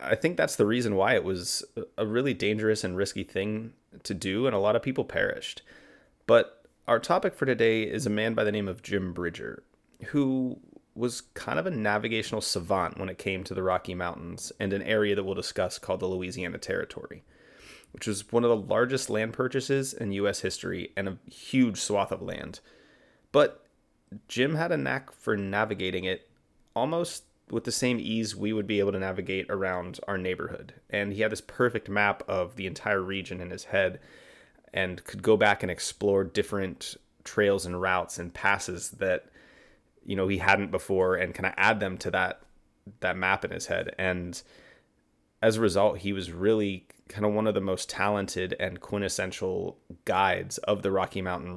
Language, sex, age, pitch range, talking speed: English, male, 30-49, 95-110 Hz, 190 wpm